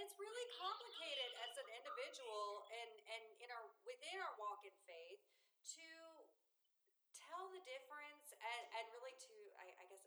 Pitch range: 205-345 Hz